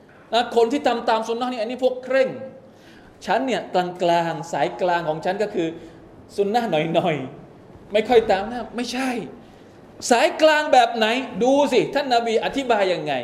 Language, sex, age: Thai, male, 20-39